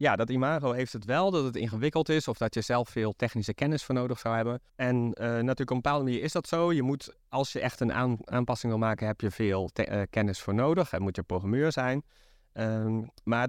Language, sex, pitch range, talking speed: Dutch, male, 105-130 Hz, 235 wpm